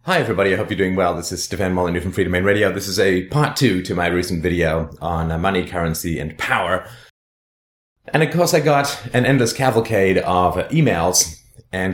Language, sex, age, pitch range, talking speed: English, male, 30-49, 90-115 Hz, 200 wpm